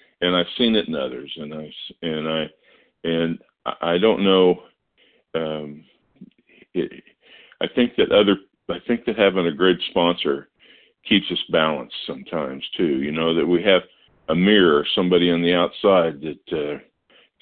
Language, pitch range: English, 75-85 Hz